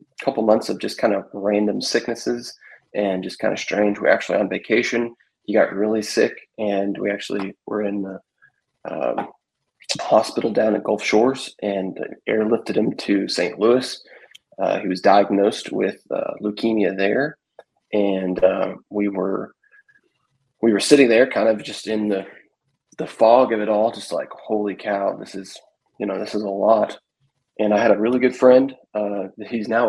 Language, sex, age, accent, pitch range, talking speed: English, male, 20-39, American, 100-115 Hz, 175 wpm